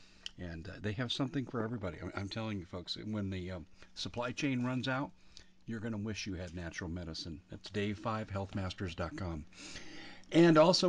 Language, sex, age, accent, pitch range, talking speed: English, male, 50-69, American, 95-125 Hz, 170 wpm